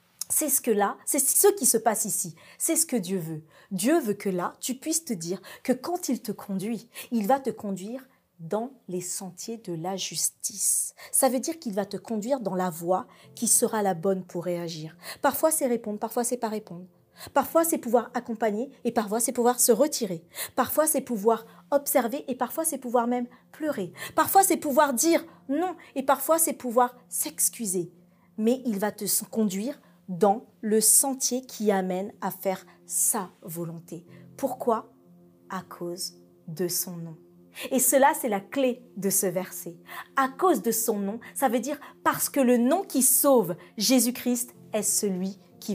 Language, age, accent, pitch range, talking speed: French, 40-59, French, 190-265 Hz, 180 wpm